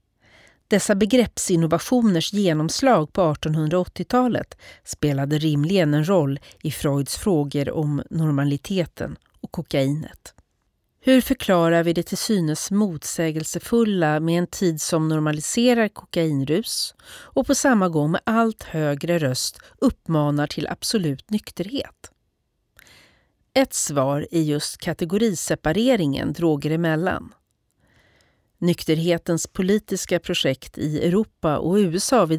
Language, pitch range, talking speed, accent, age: Swedish, 150-205 Hz, 105 wpm, native, 40-59